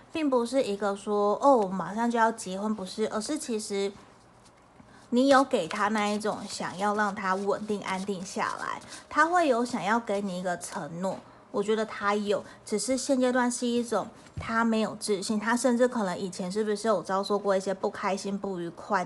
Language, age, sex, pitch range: Chinese, 20-39, female, 195-240 Hz